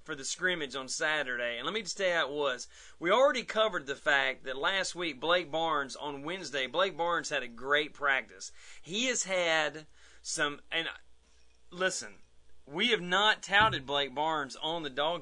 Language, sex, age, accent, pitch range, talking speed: English, male, 30-49, American, 145-210 Hz, 185 wpm